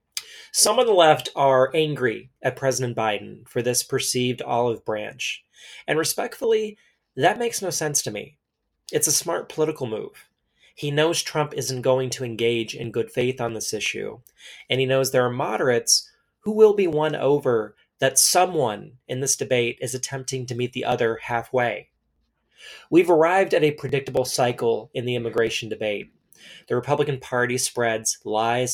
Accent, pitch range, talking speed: American, 120-150 Hz, 165 wpm